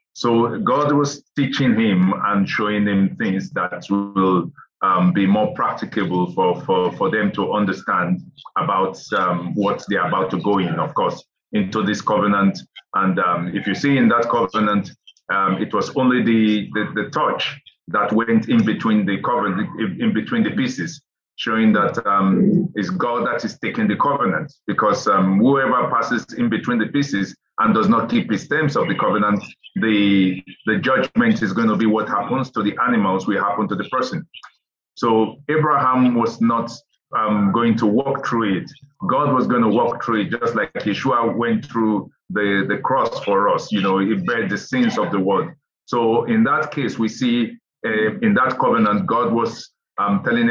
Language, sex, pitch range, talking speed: English, male, 100-140 Hz, 185 wpm